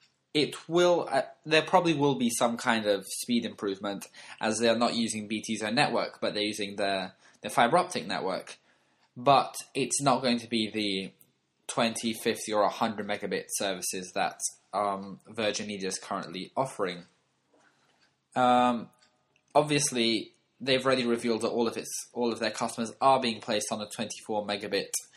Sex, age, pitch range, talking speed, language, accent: male, 10-29, 110-135 Hz, 160 wpm, English, British